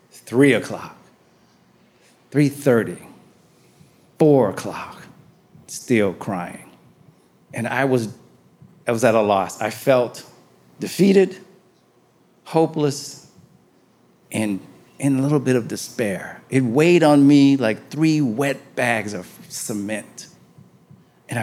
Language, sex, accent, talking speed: English, male, American, 105 wpm